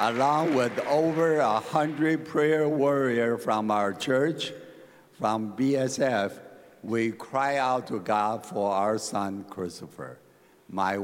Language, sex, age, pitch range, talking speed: English, male, 60-79, 105-135 Hz, 120 wpm